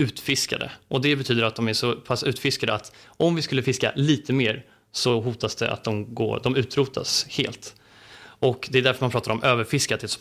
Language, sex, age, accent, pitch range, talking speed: Swedish, male, 30-49, native, 115-140 Hz, 215 wpm